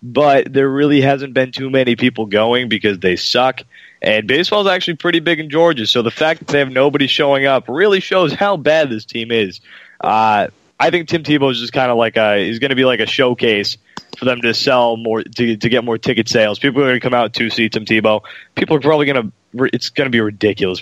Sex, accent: male, American